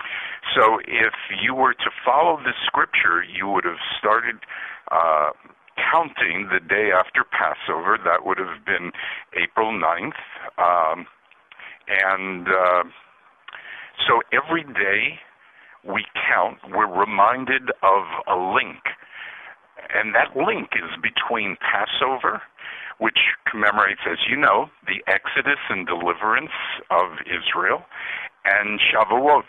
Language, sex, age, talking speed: English, male, 60-79, 115 wpm